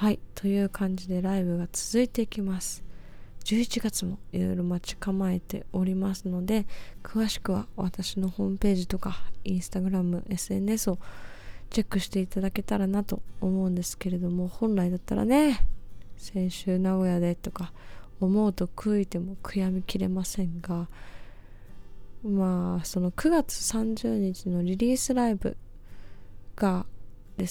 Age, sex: 20-39, female